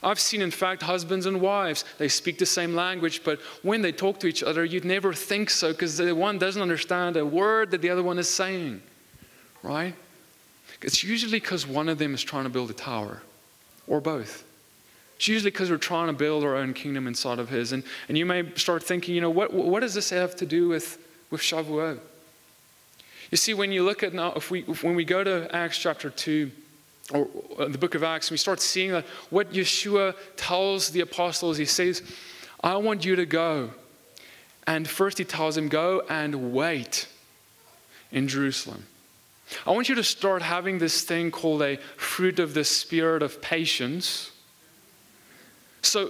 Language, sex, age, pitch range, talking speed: English, male, 20-39, 155-185 Hz, 190 wpm